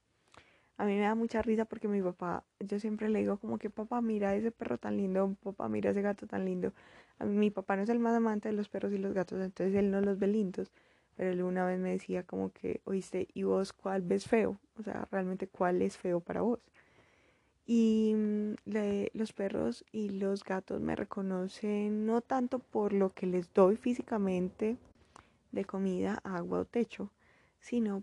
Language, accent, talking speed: Spanish, Colombian, 200 wpm